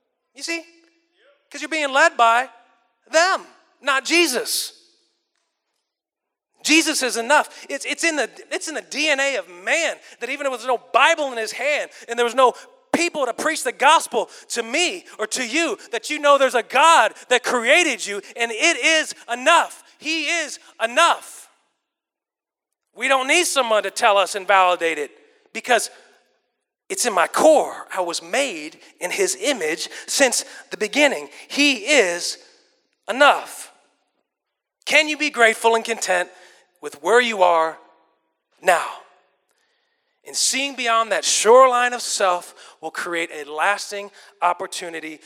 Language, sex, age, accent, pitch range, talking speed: English, male, 30-49, American, 220-330 Hz, 145 wpm